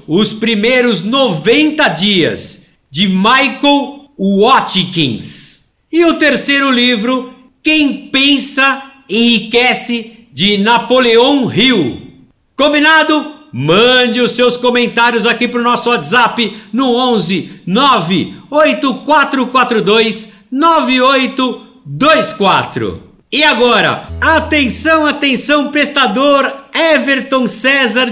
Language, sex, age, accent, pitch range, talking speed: Portuguese, male, 60-79, Brazilian, 220-275 Hz, 80 wpm